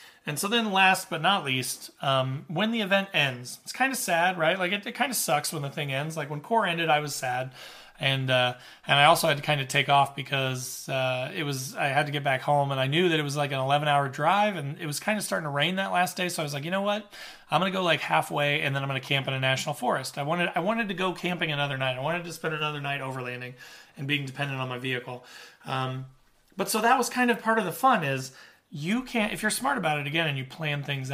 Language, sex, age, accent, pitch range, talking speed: English, male, 30-49, American, 140-190 Hz, 280 wpm